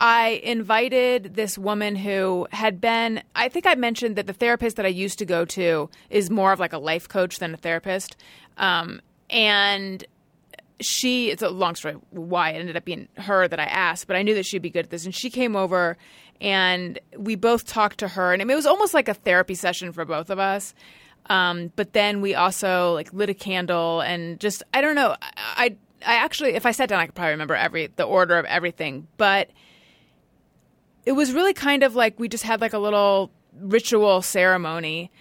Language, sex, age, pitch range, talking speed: English, female, 30-49, 175-220 Hz, 220 wpm